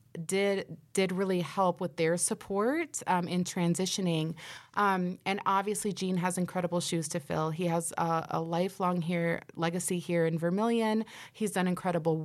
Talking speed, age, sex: 155 wpm, 30-49, female